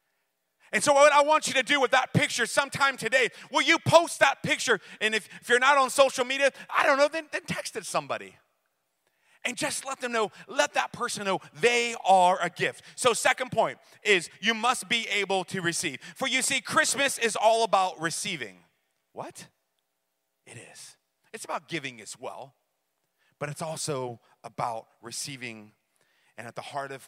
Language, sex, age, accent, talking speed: English, male, 30-49, American, 185 wpm